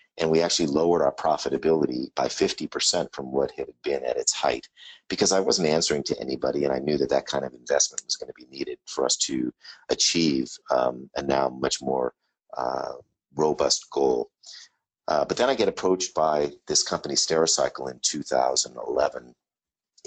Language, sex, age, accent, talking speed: English, male, 50-69, American, 180 wpm